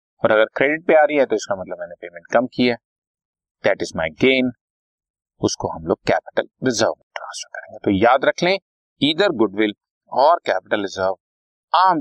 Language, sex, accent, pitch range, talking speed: Hindi, male, native, 100-165 Hz, 185 wpm